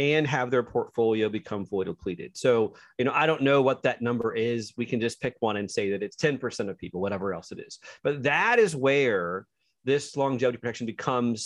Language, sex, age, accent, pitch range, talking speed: English, male, 30-49, American, 115-140 Hz, 215 wpm